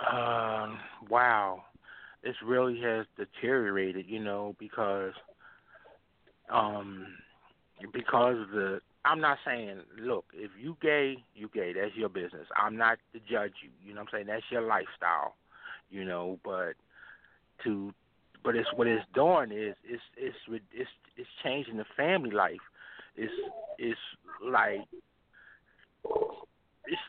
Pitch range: 110-180 Hz